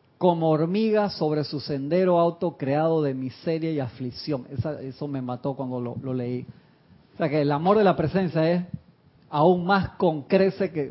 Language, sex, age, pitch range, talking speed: Spanish, male, 40-59, 145-185 Hz, 170 wpm